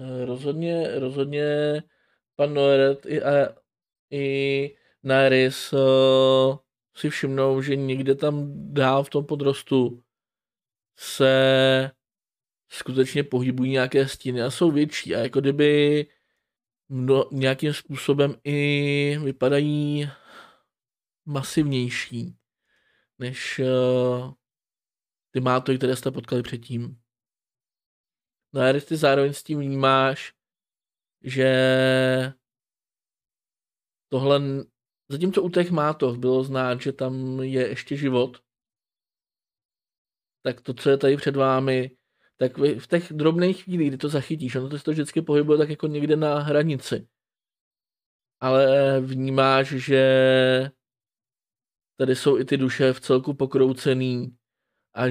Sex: male